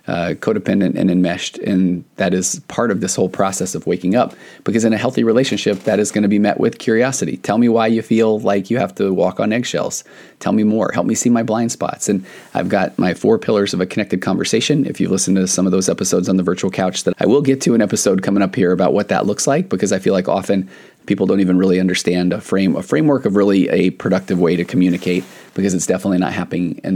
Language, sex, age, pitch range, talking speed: English, male, 30-49, 95-110 Hz, 255 wpm